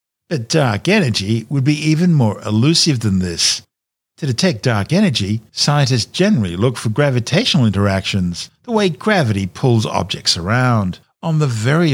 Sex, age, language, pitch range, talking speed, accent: male, 50-69, English, 105-145 Hz, 145 wpm, Australian